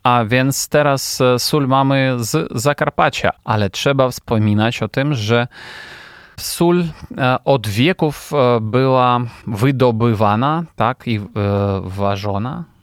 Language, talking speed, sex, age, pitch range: Polish, 100 wpm, male, 30-49, 110-135 Hz